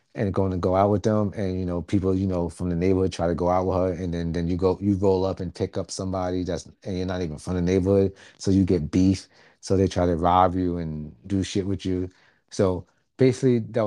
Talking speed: 260 wpm